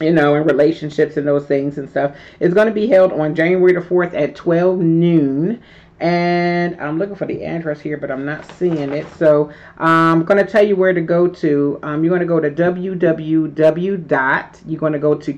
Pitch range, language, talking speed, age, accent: 150-180 Hz, English, 215 wpm, 40-59, American